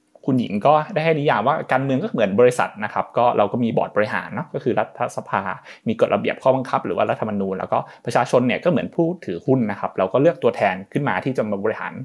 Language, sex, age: Thai, male, 20-39